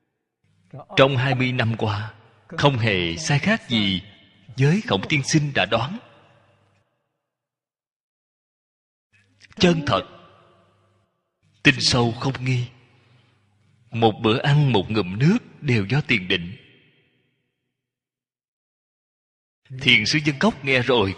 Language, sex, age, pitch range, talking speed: Vietnamese, male, 20-39, 105-145 Hz, 110 wpm